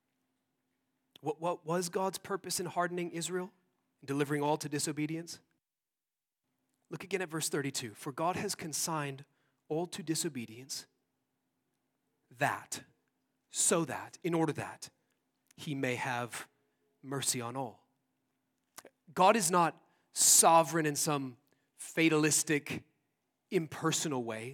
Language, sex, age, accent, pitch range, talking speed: English, male, 30-49, American, 135-175 Hz, 110 wpm